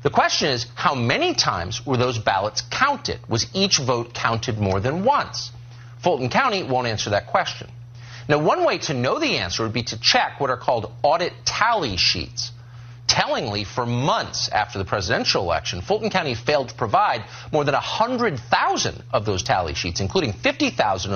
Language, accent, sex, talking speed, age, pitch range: English, American, male, 175 wpm, 40-59, 115-145 Hz